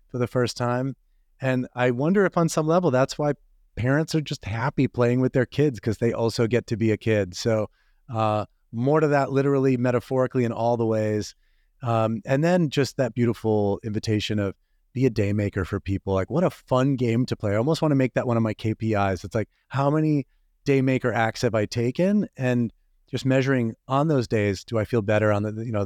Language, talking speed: English, 215 wpm